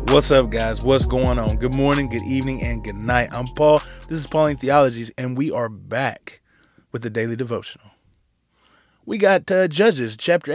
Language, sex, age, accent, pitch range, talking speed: English, male, 20-39, American, 125-165 Hz, 180 wpm